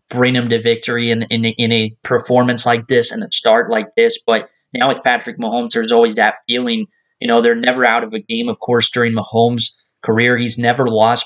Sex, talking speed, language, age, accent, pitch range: male, 220 wpm, English, 20-39, American, 115-145 Hz